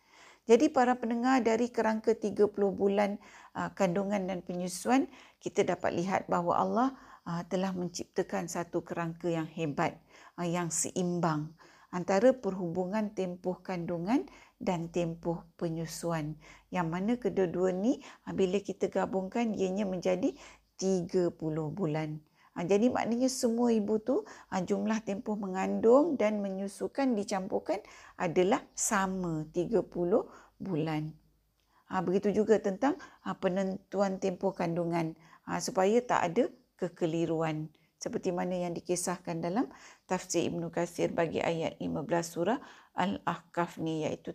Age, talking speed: 50-69, 115 wpm